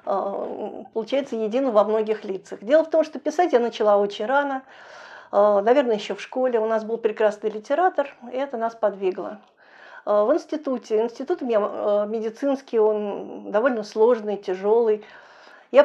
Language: Russian